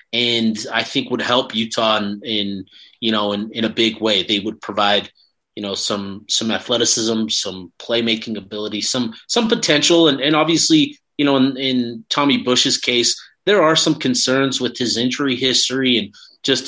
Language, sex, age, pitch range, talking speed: English, male, 30-49, 110-135 Hz, 175 wpm